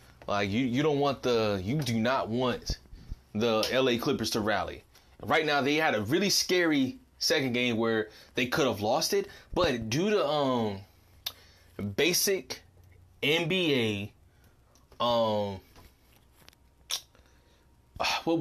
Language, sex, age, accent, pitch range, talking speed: English, male, 20-39, American, 110-155 Hz, 125 wpm